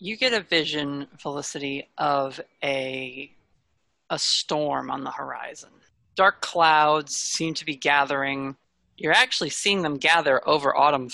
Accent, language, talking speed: American, English, 135 wpm